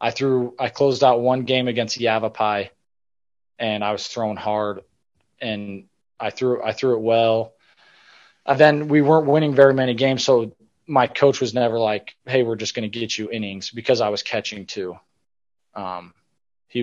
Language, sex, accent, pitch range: English, male, American, 105-125 Hz